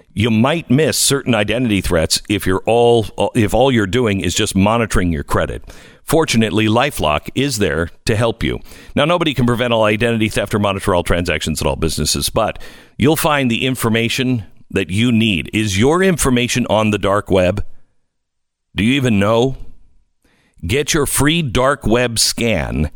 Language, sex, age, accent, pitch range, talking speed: English, male, 50-69, American, 95-125 Hz, 165 wpm